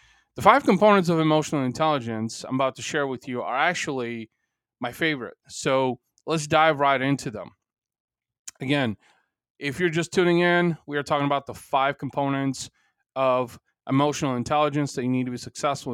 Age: 30-49